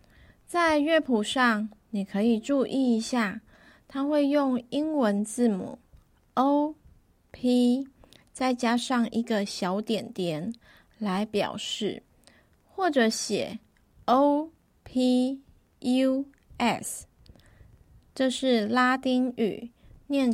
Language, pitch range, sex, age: Chinese, 215-270 Hz, female, 20-39